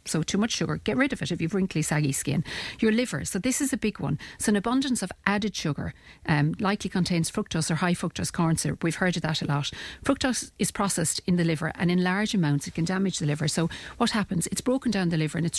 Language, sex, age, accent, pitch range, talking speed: English, female, 50-69, Irish, 160-195 Hz, 260 wpm